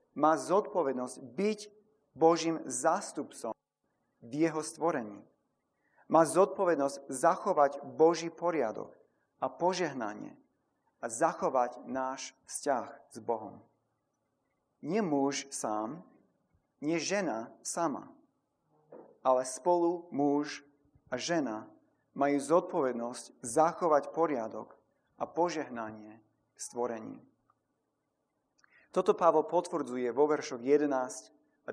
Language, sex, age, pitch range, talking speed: Slovak, male, 40-59, 135-170 Hz, 90 wpm